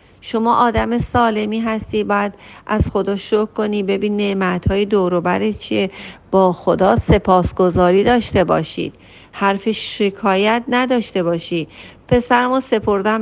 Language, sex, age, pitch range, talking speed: Persian, female, 40-59, 180-225 Hz, 120 wpm